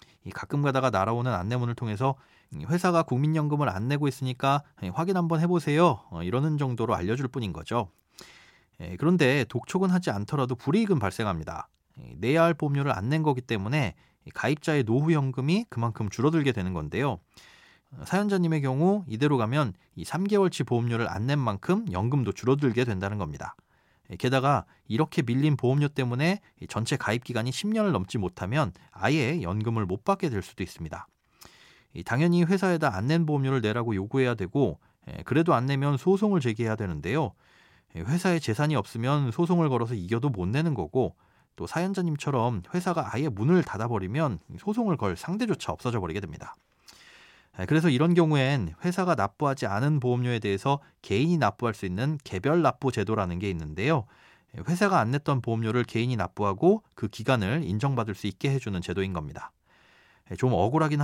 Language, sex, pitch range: Korean, male, 110-155 Hz